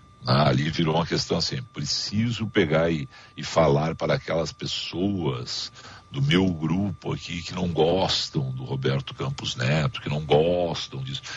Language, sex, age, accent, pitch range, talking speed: Portuguese, male, 60-79, Brazilian, 90-130 Hz, 155 wpm